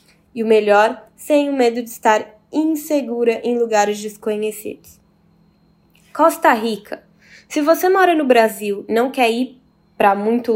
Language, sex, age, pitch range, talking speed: Portuguese, female, 10-29, 215-250 Hz, 140 wpm